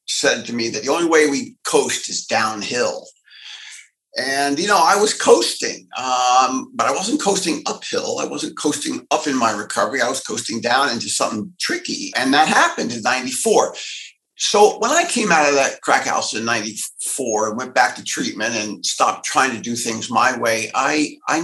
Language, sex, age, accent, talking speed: English, male, 50-69, American, 190 wpm